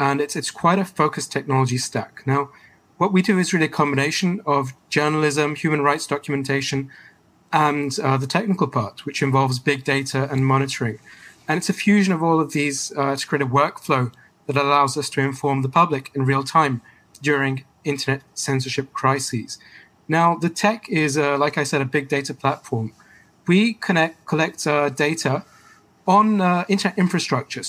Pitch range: 140-165 Hz